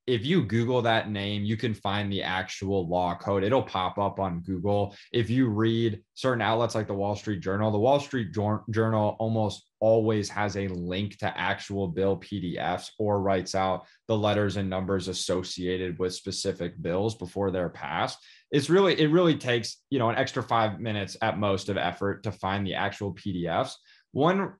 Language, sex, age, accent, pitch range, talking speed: English, male, 20-39, American, 100-125 Hz, 185 wpm